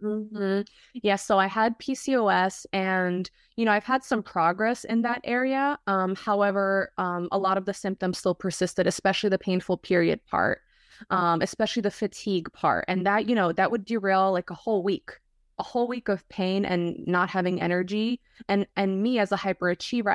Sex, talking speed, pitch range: female, 185 wpm, 180-215 Hz